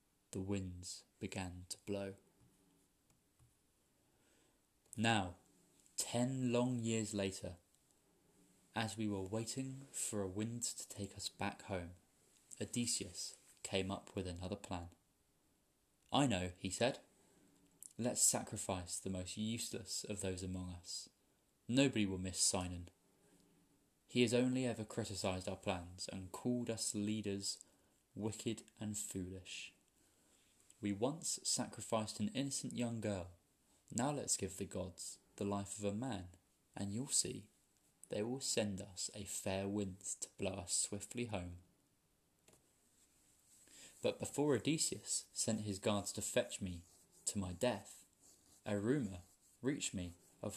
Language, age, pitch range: English, 20-39, 95-115 Hz